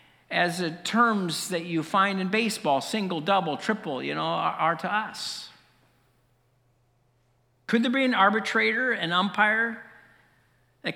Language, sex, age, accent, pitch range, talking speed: English, male, 50-69, American, 160-225 Hz, 135 wpm